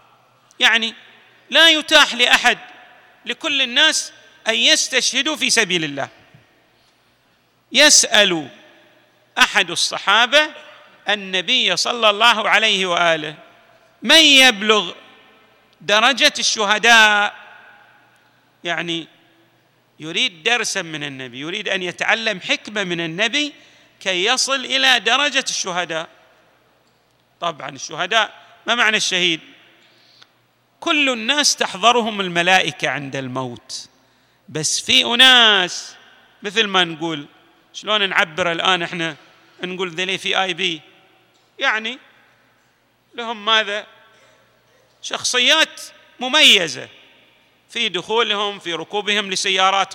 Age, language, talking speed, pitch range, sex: 40-59, Arabic, 90 wpm, 180-265 Hz, male